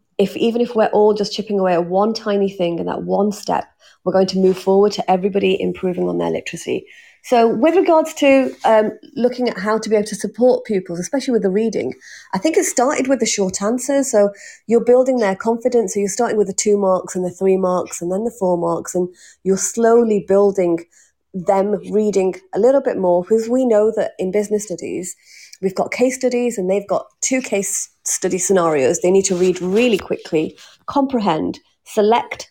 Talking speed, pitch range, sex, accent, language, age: 205 wpm, 185-235 Hz, female, British, English, 30-49